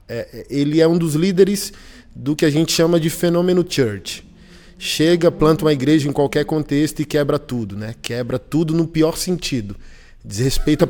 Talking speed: 165 wpm